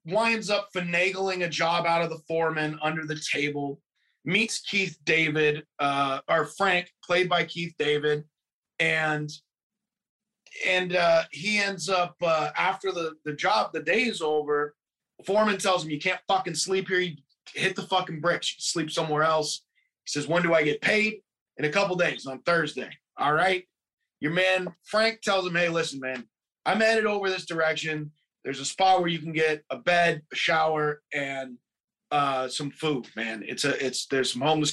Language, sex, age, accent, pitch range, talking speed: English, male, 20-39, American, 150-190 Hz, 180 wpm